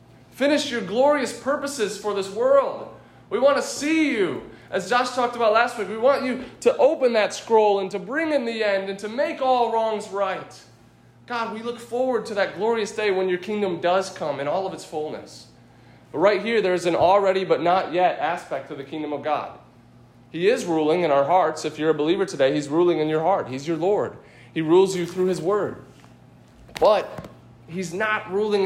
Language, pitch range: English, 165-215 Hz